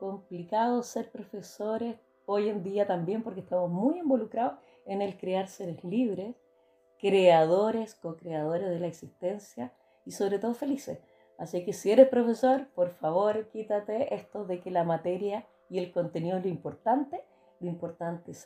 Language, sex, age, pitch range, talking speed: Spanish, female, 30-49, 180-235 Hz, 155 wpm